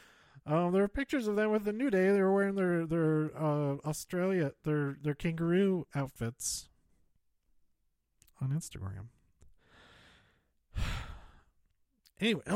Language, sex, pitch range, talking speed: English, male, 115-175 Hz, 115 wpm